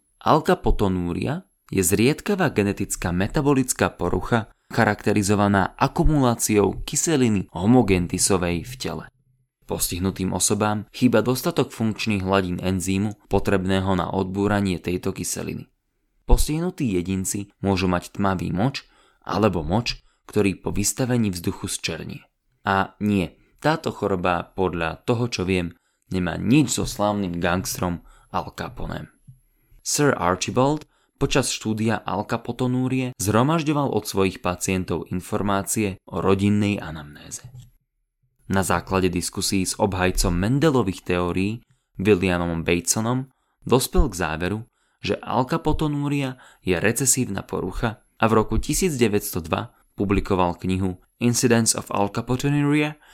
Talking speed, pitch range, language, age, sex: 100 wpm, 95-125 Hz, Slovak, 20-39, male